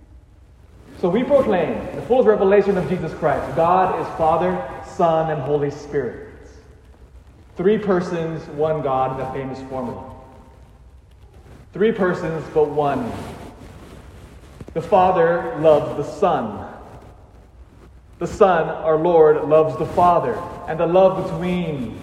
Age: 30-49